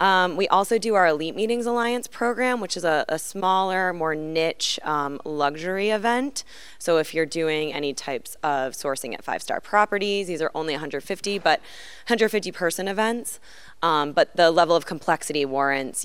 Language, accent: English, American